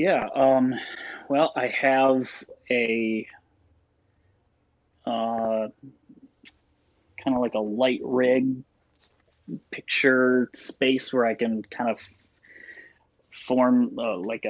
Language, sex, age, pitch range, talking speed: English, male, 20-39, 105-125 Hz, 95 wpm